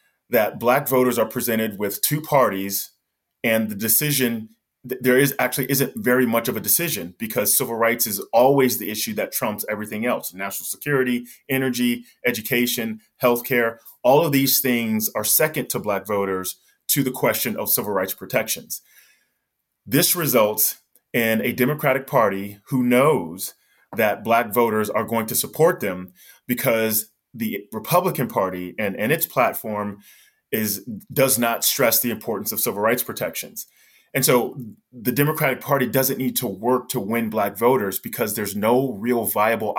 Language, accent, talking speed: English, American, 155 wpm